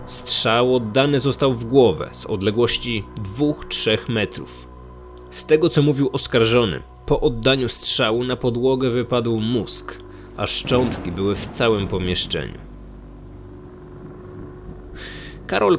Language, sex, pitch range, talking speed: Polish, male, 90-135 Hz, 110 wpm